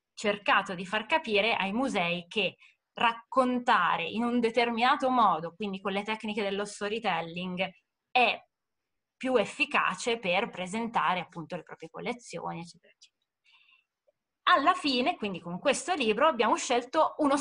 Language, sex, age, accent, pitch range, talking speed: Italian, female, 20-39, native, 195-265 Hz, 130 wpm